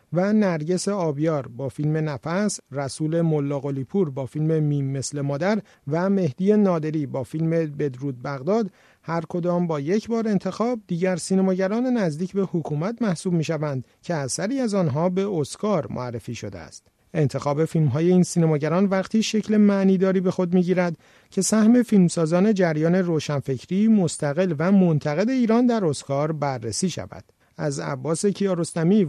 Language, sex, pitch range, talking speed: Persian, male, 145-195 Hz, 140 wpm